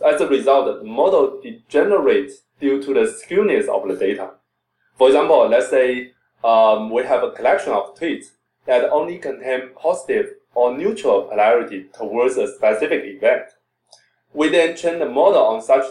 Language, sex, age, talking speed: English, male, 20-39, 160 wpm